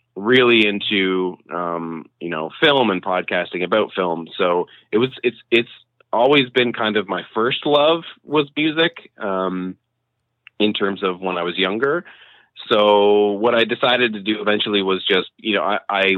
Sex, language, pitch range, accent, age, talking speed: male, English, 90-110 Hz, American, 30-49, 165 wpm